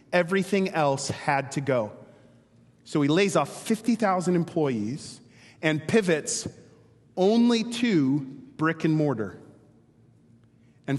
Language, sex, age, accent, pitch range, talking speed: English, male, 30-49, American, 135-175 Hz, 105 wpm